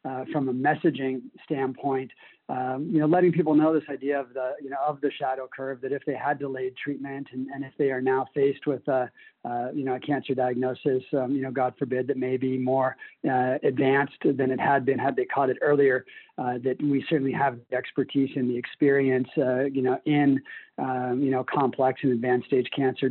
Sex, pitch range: male, 125-140 Hz